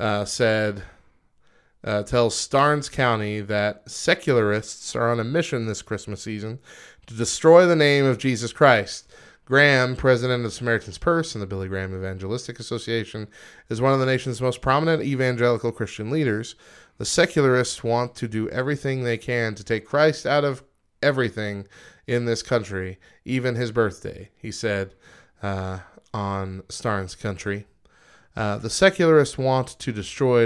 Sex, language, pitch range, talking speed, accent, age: male, English, 105-135 Hz, 150 wpm, American, 20-39